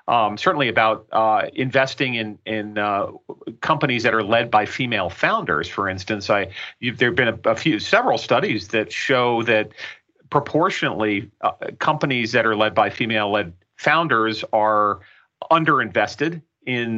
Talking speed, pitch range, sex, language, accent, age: 140 wpm, 105-130 Hz, male, English, American, 40-59